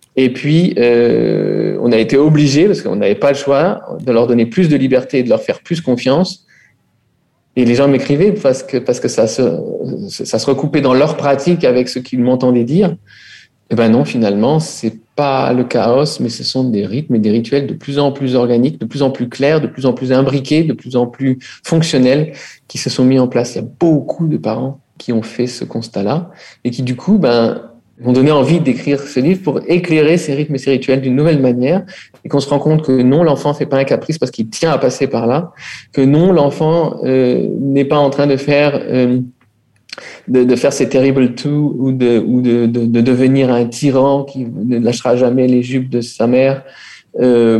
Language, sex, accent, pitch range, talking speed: French, male, French, 125-150 Hz, 220 wpm